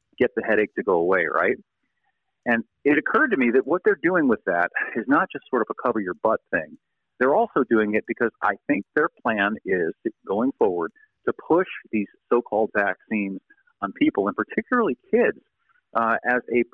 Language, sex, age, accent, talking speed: English, male, 50-69, American, 195 wpm